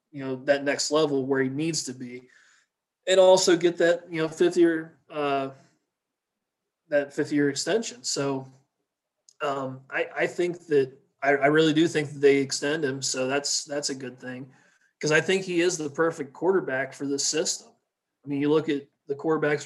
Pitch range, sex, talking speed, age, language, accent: 140-165 Hz, male, 190 wpm, 30-49, English, American